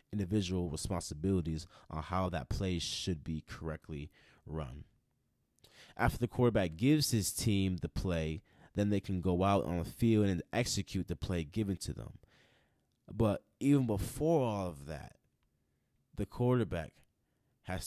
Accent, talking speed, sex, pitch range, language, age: American, 140 wpm, male, 90-110 Hz, English, 20-39